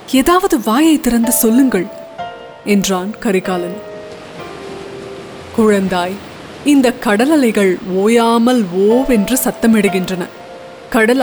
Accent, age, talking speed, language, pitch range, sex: native, 20-39, 75 wpm, Tamil, 205-275 Hz, female